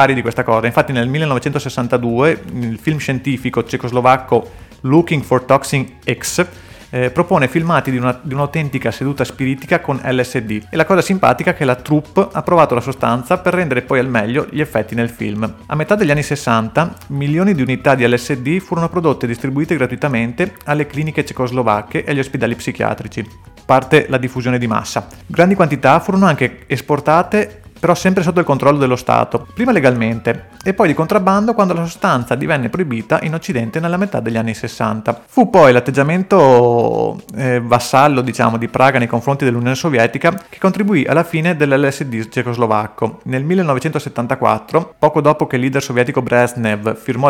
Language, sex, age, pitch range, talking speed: Italian, male, 30-49, 120-155 Hz, 165 wpm